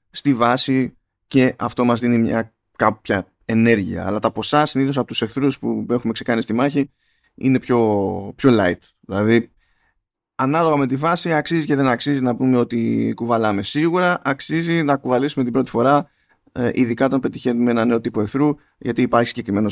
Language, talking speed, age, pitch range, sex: Greek, 165 wpm, 20-39, 110-135 Hz, male